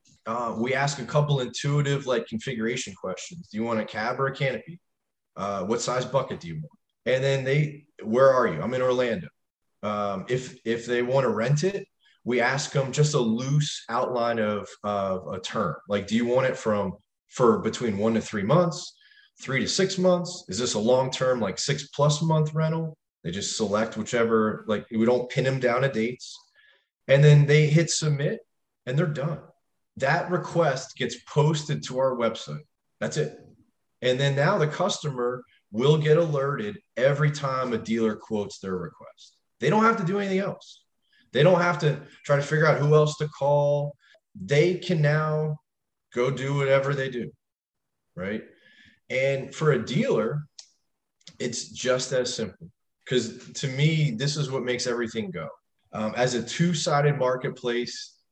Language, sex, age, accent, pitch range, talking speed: English, male, 30-49, American, 125-160 Hz, 175 wpm